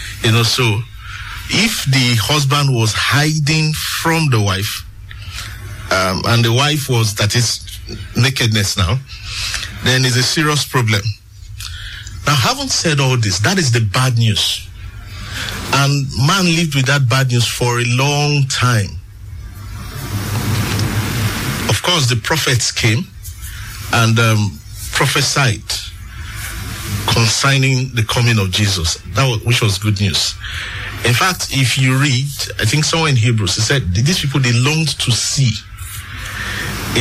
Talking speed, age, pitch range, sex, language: 135 wpm, 50-69, 100-135 Hz, male, English